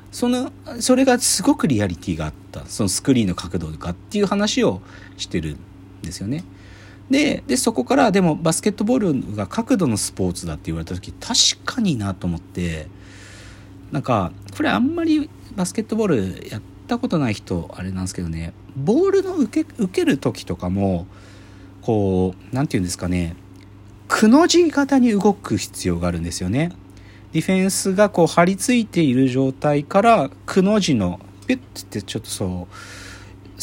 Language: Japanese